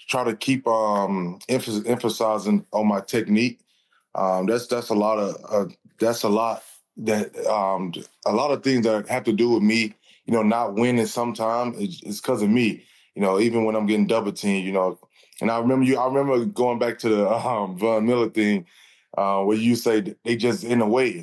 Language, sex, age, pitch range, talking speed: English, male, 20-39, 105-120 Hz, 205 wpm